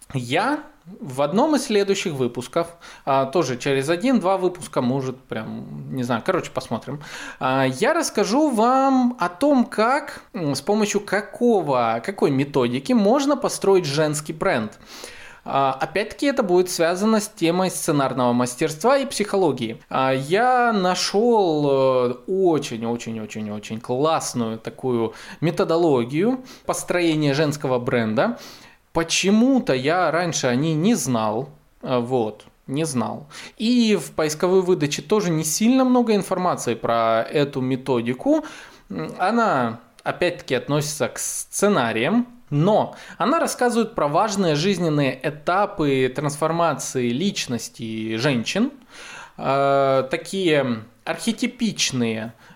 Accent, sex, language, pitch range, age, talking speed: native, male, Russian, 130-205 Hz, 20-39, 100 wpm